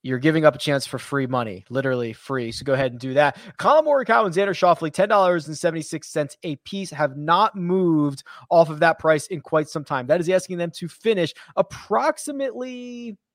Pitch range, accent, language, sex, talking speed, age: 155-205 Hz, American, English, male, 190 wpm, 20-39